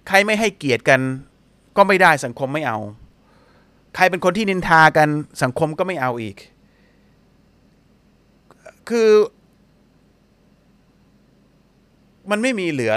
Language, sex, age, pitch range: Thai, male, 30-49, 130-200 Hz